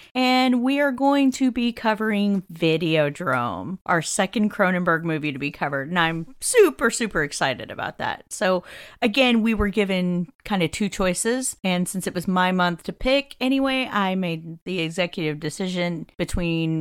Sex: female